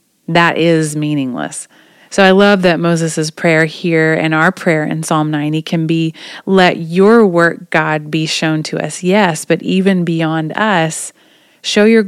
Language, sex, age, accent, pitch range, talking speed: English, female, 30-49, American, 155-190 Hz, 165 wpm